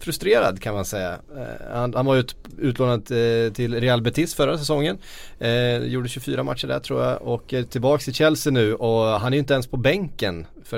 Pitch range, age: 110-135 Hz, 30-49